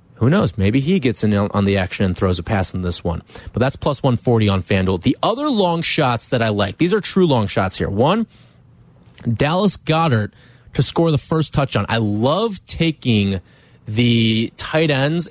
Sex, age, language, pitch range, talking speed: male, 20-39, English, 110-150 Hz, 190 wpm